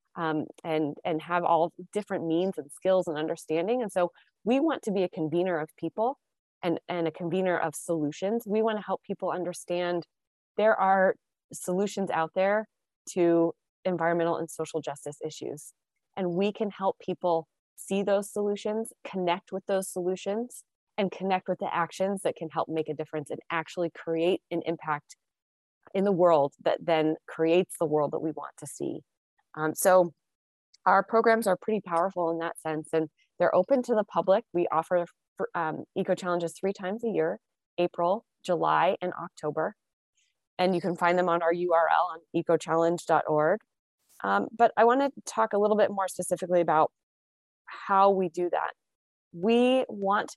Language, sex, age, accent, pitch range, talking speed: English, female, 20-39, American, 165-195 Hz, 170 wpm